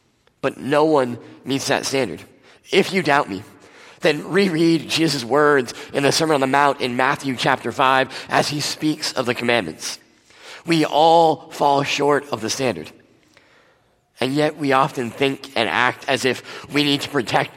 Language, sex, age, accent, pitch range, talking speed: English, male, 30-49, American, 125-150 Hz, 170 wpm